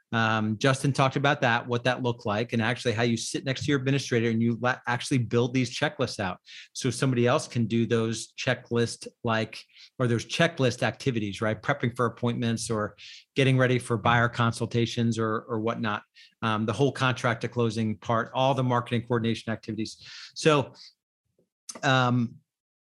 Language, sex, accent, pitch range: English, male, American, 115-135 Hz